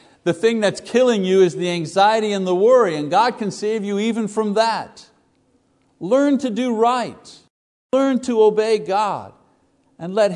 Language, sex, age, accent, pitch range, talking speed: English, male, 60-79, American, 125-195 Hz, 170 wpm